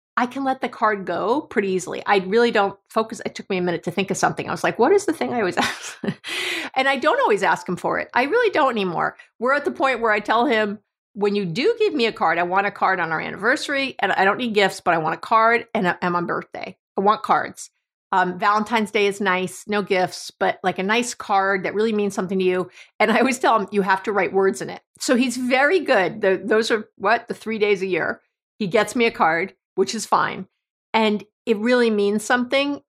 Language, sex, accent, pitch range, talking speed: English, female, American, 195-245 Hz, 250 wpm